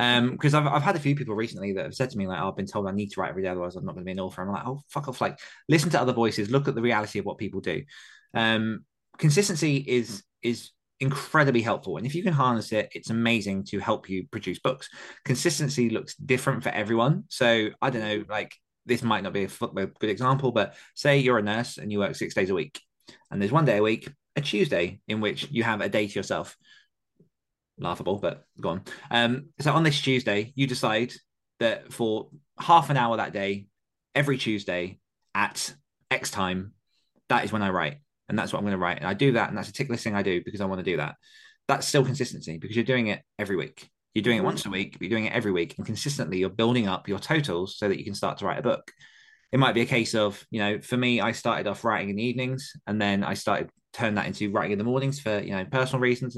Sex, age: male, 20-39